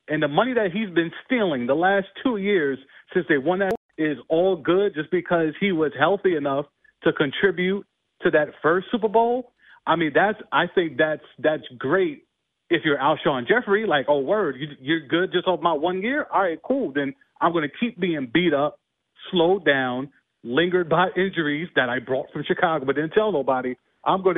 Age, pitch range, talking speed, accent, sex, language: 40-59, 155-215 Hz, 200 wpm, American, male, English